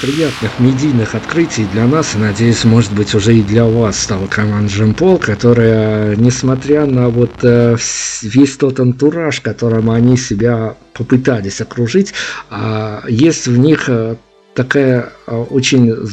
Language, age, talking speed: Russian, 50-69, 135 wpm